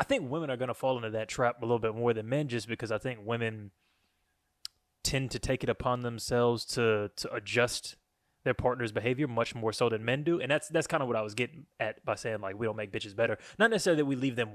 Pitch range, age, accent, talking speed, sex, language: 115-145 Hz, 20-39, American, 255 wpm, male, English